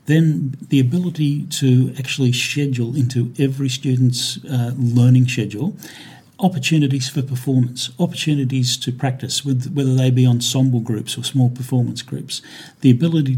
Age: 50-69